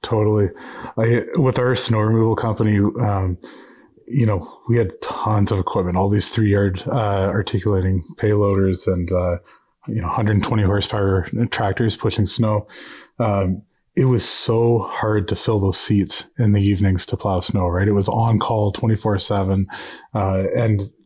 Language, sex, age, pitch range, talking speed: English, male, 20-39, 100-120 Hz, 150 wpm